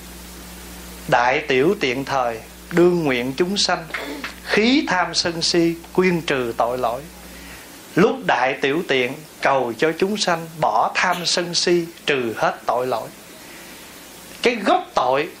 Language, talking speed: Vietnamese, 135 wpm